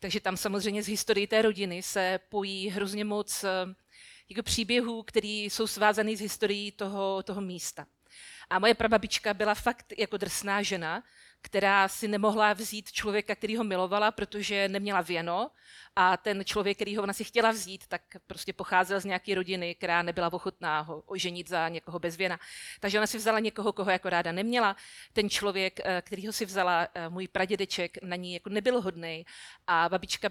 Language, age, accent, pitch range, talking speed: Czech, 40-59, native, 180-215 Hz, 175 wpm